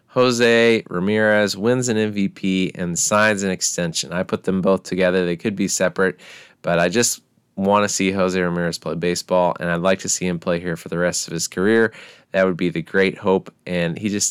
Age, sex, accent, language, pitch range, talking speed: 20-39, male, American, English, 90-110 Hz, 215 wpm